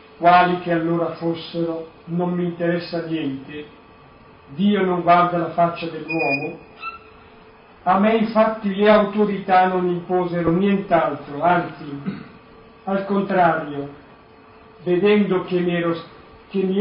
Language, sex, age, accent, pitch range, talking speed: Italian, male, 50-69, native, 165-200 Hz, 105 wpm